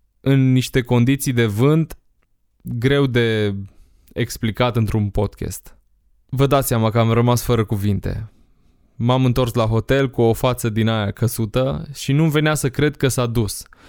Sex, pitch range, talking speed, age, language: male, 115-135 Hz, 155 wpm, 20-39, Romanian